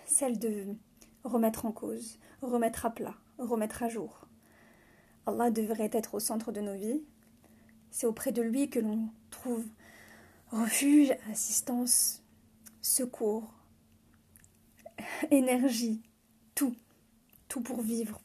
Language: French